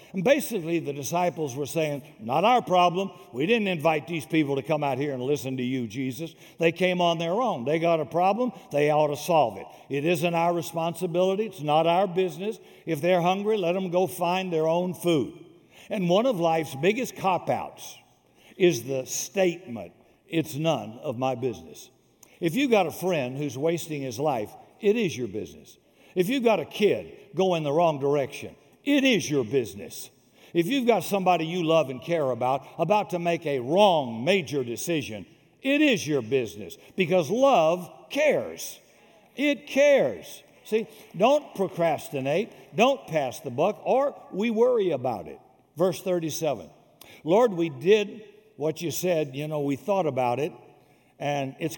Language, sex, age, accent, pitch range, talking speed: English, male, 60-79, American, 145-190 Hz, 170 wpm